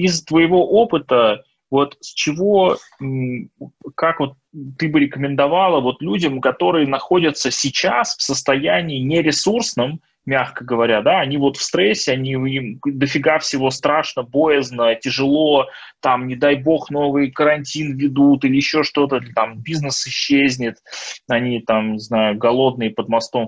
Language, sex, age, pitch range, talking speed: Russian, male, 20-39, 115-150 Hz, 135 wpm